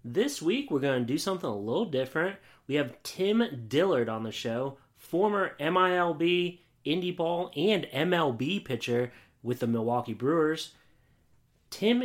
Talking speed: 145 wpm